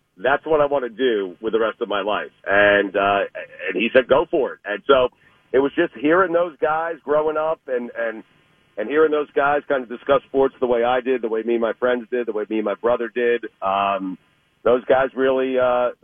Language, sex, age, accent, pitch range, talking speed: English, male, 50-69, American, 115-145 Hz, 235 wpm